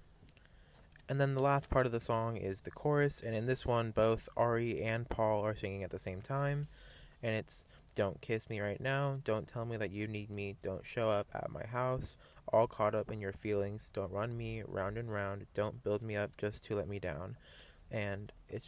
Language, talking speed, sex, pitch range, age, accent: English, 220 wpm, male, 100-115 Hz, 20-39, American